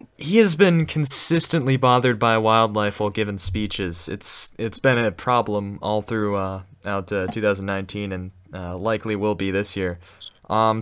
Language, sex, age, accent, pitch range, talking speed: English, male, 20-39, American, 95-120 Hz, 160 wpm